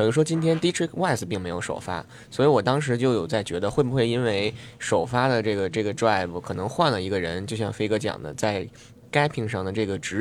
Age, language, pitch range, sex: 20-39, Chinese, 105-130 Hz, male